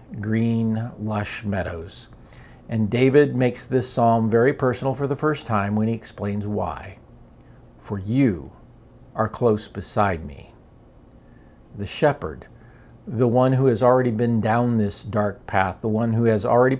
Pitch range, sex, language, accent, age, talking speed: 105-130 Hz, male, English, American, 50-69, 145 wpm